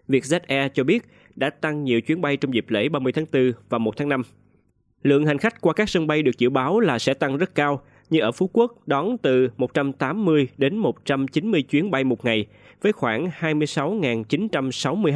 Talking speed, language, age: 200 wpm, Vietnamese, 20-39